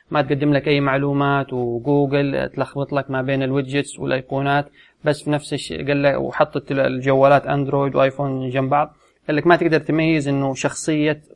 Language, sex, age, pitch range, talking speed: Arabic, male, 30-49, 130-150 Hz, 160 wpm